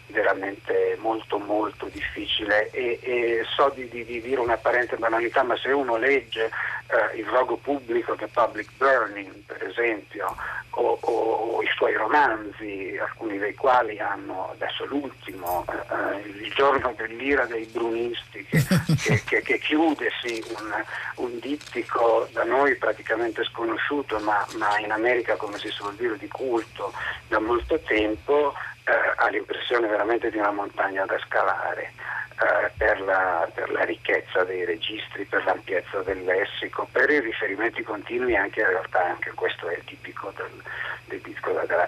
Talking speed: 150 wpm